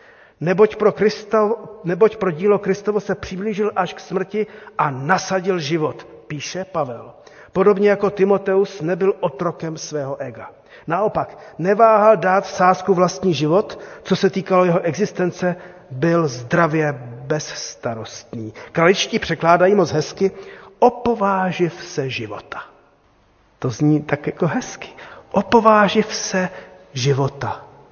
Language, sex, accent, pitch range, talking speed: Czech, male, native, 145-205 Hz, 115 wpm